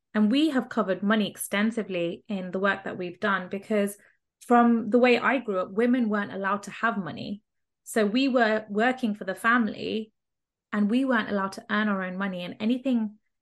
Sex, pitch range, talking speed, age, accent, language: female, 195-225 Hz, 190 wpm, 20-39, British, English